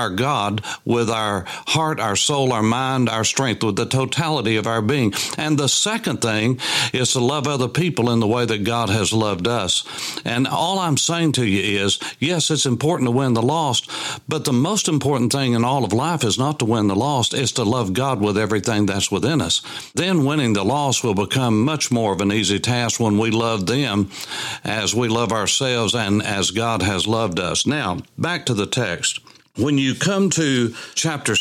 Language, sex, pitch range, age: English, male, 115-155 Hz, 60-79